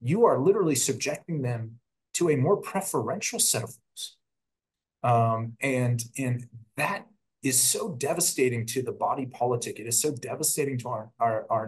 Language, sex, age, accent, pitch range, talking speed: English, male, 30-49, American, 115-135 Hz, 160 wpm